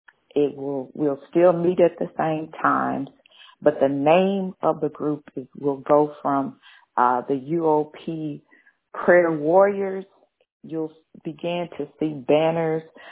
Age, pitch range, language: 40-59, 140-165 Hz, English